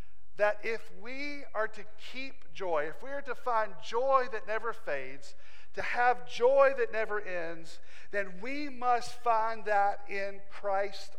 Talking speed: 155 wpm